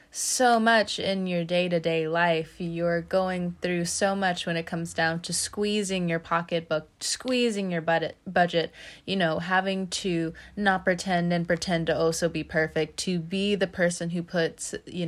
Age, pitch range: 20-39, 155-200 Hz